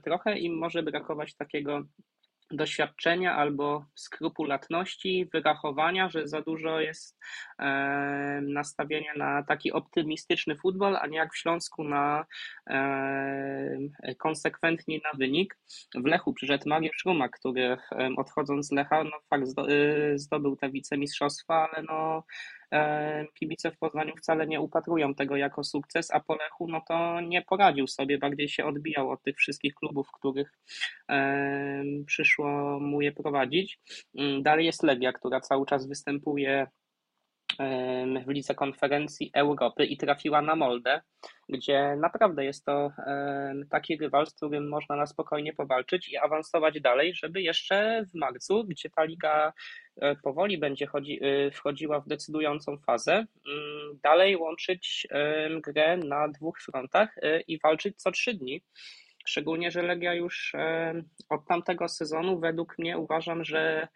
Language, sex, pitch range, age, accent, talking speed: Polish, male, 140-165 Hz, 20-39, native, 130 wpm